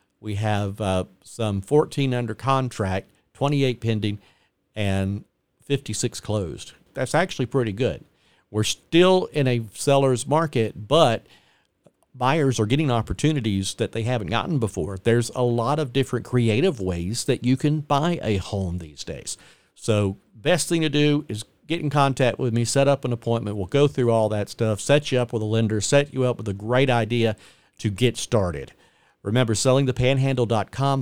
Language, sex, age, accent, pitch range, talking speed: English, male, 50-69, American, 105-135 Hz, 165 wpm